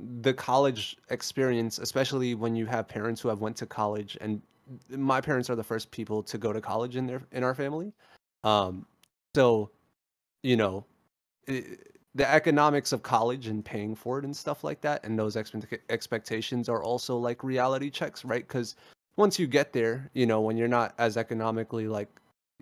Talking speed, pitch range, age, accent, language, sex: 180 wpm, 110-135 Hz, 30-49, American, English, male